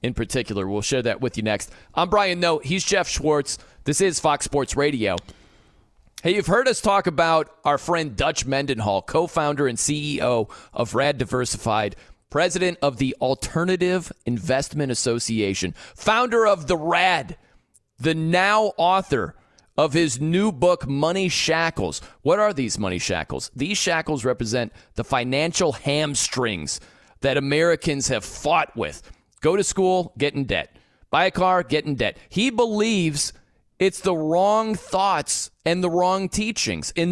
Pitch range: 125-180 Hz